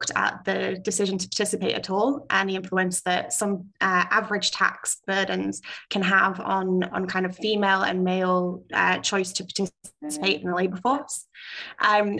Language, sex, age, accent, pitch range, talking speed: English, female, 10-29, British, 190-210 Hz, 165 wpm